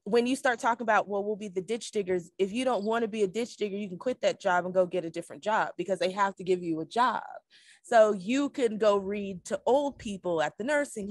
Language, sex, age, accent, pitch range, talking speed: English, female, 20-39, American, 185-230 Hz, 275 wpm